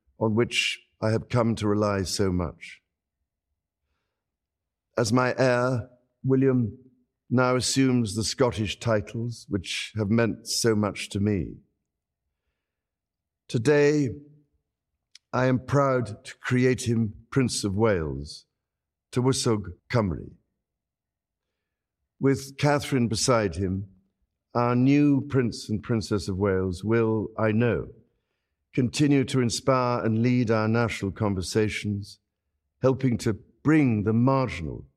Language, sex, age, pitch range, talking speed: Swedish, male, 50-69, 95-125 Hz, 110 wpm